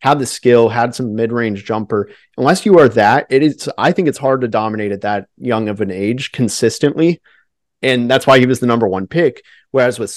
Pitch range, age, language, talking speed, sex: 110-135 Hz, 30-49, English, 220 wpm, male